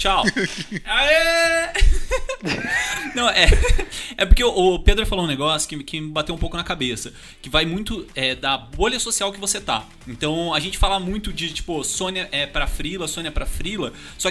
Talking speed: 185 wpm